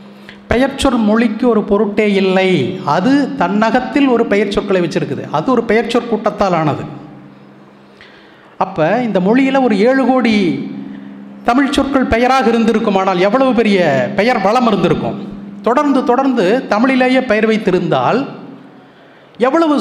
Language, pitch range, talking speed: Tamil, 195-260 Hz, 115 wpm